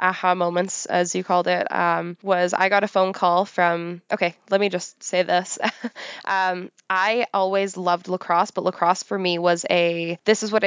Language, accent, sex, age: English, American, female, 10-29